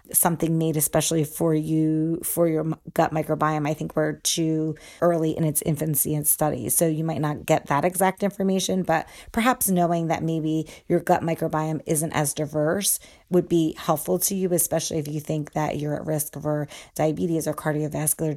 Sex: female